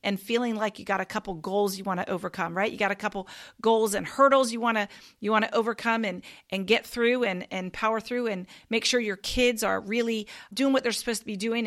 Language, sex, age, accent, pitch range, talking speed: English, female, 40-59, American, 195-240 Hz, 235 wpm